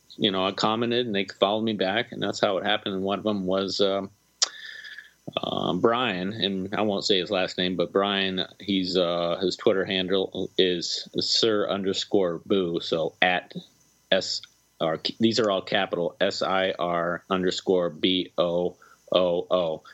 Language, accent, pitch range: English, American, 90-105 Hz